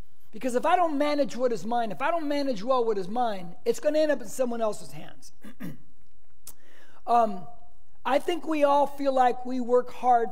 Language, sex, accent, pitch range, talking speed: English, male, American, 230-280 Hz, 205 wpm